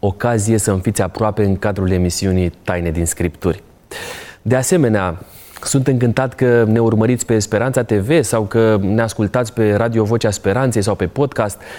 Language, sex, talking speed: Romanian, male, 160 wpm